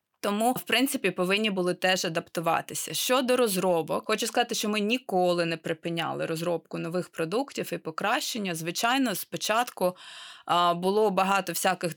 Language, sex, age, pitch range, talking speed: Ukrainian, female, 20-39, 170-210 Hz, 130 wpm